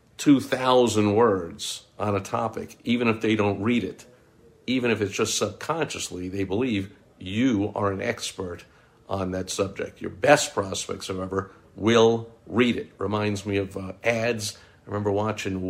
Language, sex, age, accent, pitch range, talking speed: English, male, 50-69, American, 95-115 Hz, 155 wpm